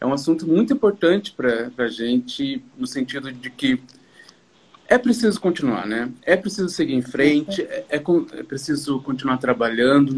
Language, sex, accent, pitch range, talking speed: English, male, Brazilian, 130-190 Hz, 160 wpm